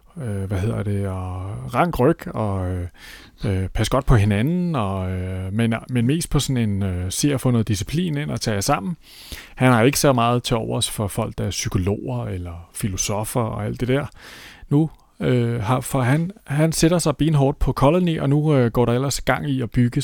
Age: 30-49